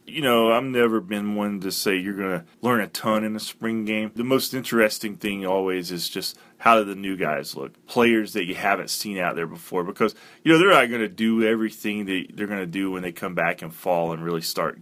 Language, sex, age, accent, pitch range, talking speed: English, male, 30-49, American, 105-120 Hz, 250 wpm